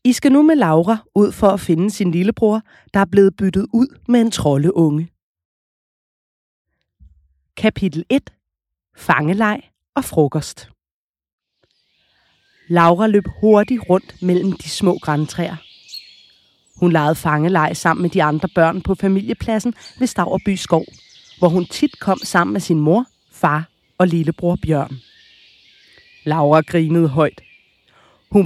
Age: 30-49